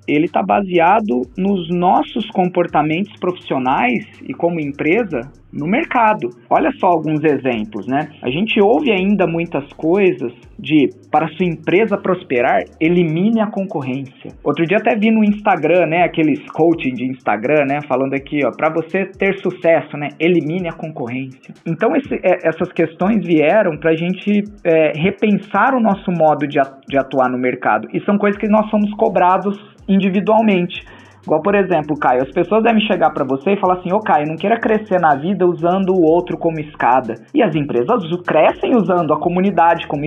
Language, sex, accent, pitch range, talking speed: Portuguese, male, Brazilian, 150-195 Hz, 165 wpm